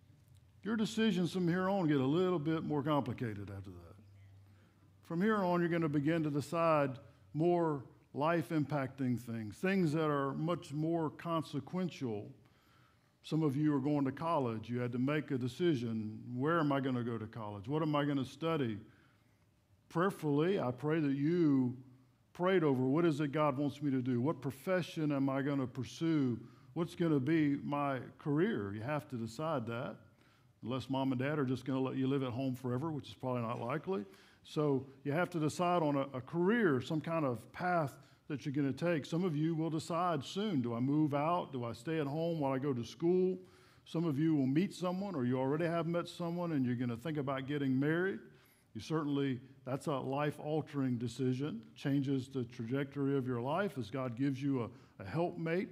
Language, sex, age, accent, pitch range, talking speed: English, male, 50-69, American, 125-165 Hz, 200 wpm